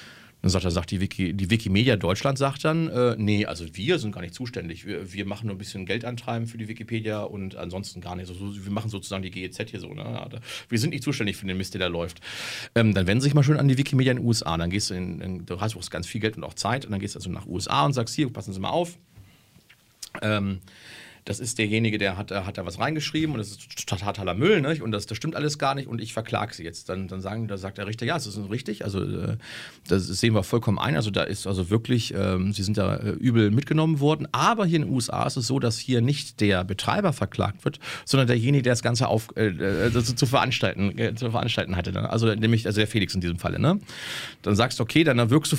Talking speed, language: 265 wpm, German